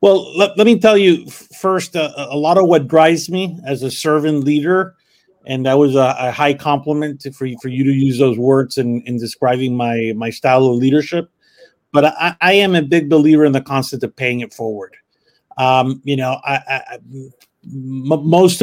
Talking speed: 205 wpm